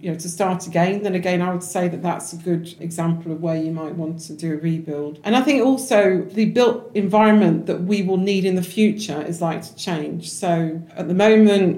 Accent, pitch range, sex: British, 165-185 Hz, female